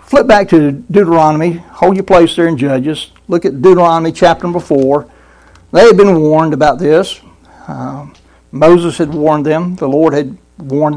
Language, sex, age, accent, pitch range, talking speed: English, male, 60-79, American, 145-185 Hz, 165 wpm